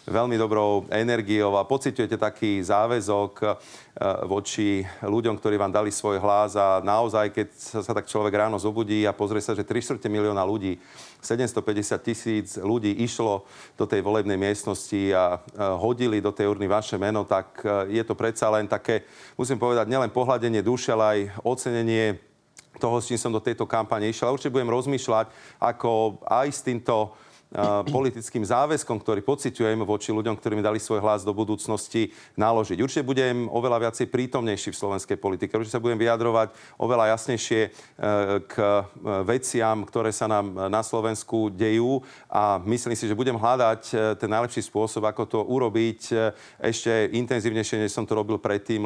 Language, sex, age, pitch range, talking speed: Slovak, male, 40-59, 105-115 Hz, 155 wpm